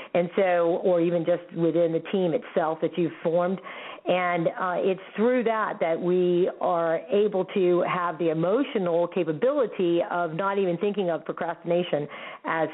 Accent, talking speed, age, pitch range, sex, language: American, 155 wpm, 50-69, 170-200 Hz, female, English